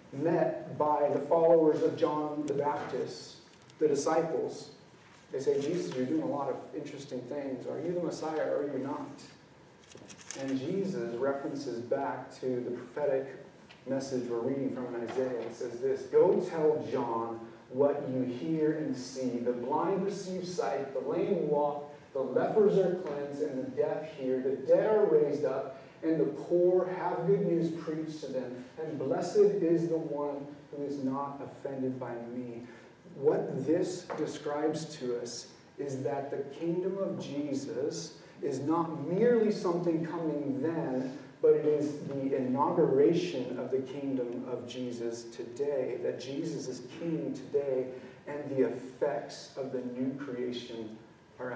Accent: American